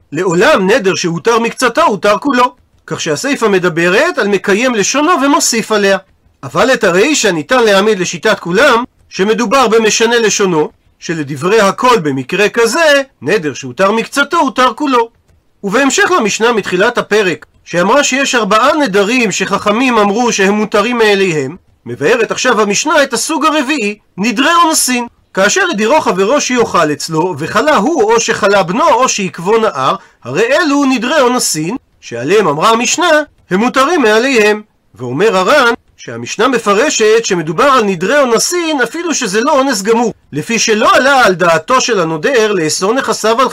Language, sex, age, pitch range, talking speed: Hebrew, male, 40-59, 195-255 Hz, 140 wpm